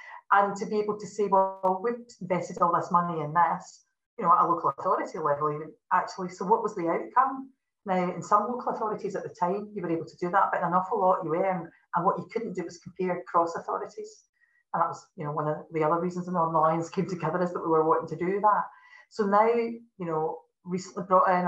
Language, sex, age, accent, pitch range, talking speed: English, female, 40-59, British, 165-210 Hz, 245 wpm